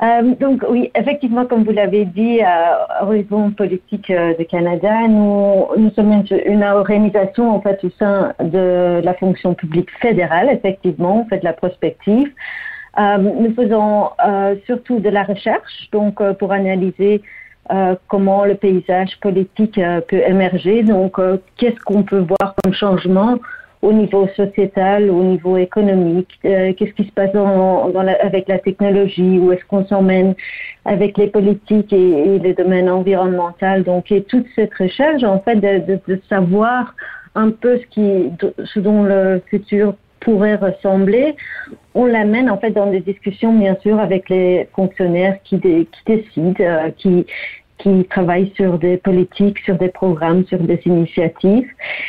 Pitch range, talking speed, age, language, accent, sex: 185-215 Hz, 165 wpm, 50-69, French, French, female